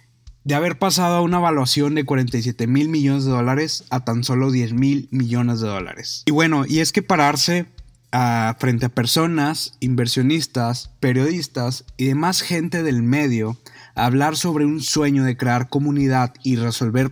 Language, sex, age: Spanish, male, 20-39